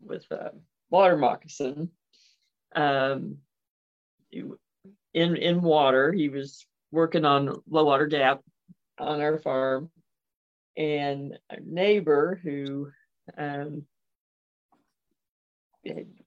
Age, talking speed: 50-69, 90 wpm